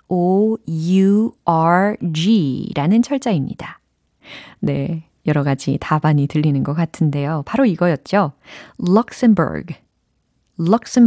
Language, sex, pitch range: Korean, female, 155-235 Hz